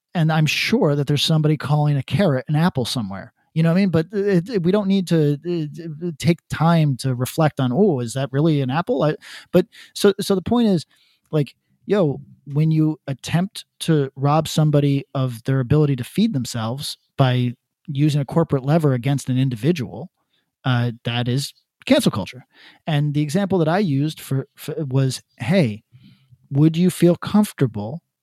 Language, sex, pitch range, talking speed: English, male, 135-175 Hz, 175 wpm